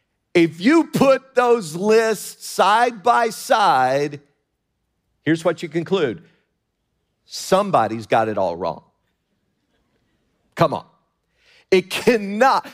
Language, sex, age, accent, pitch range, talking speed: English, male, 50-69, American, 135-220 Hz, 100 wpm